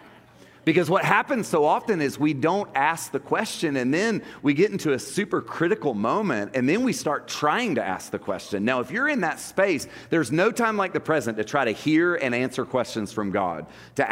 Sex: male